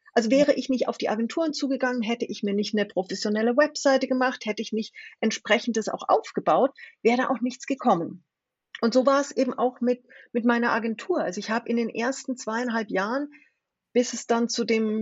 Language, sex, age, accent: German, female, 30-49, German